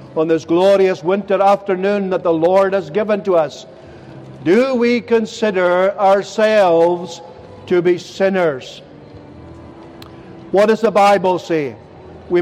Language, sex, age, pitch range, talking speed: English, male, 50-69, 170-210 Hz, 120 wpm